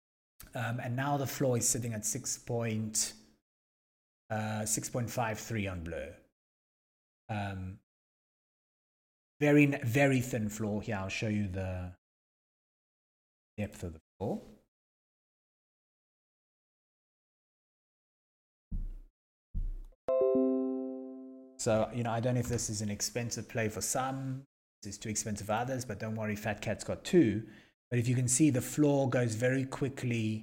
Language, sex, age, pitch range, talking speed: English, male, 30-49, 105-130 Hz, 120 wpm